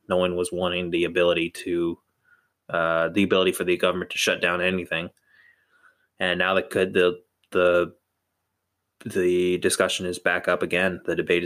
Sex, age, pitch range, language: male, 20-39, 90-100 Hz, English